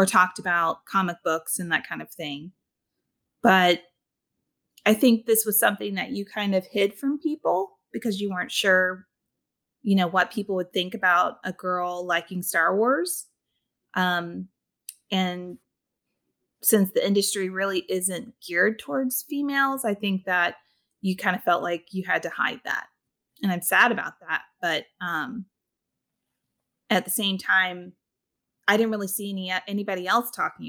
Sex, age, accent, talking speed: female, 30-49, American, 160 wpm